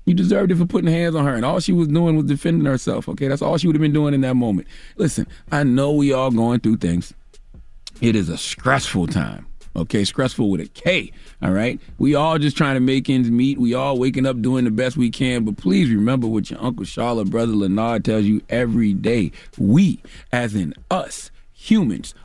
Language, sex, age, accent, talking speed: English, male, 40-59, American, 220 wpm